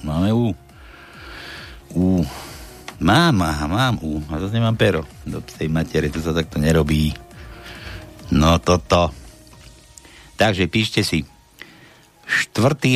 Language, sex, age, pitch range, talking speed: Slovak, male, 60-79, 95-115 Hz, 105 wpm